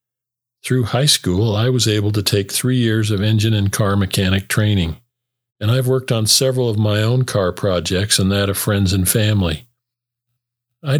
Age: 50-69